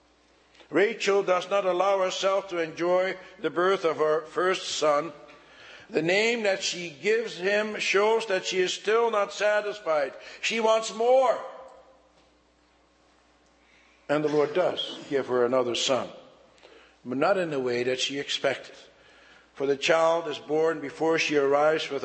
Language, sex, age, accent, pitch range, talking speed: English, male, 60-79, American, 135-180 Hz, 145 wpm